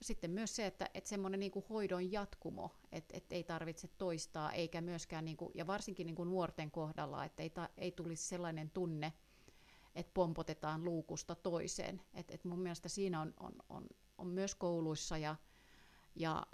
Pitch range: 160-180 Hz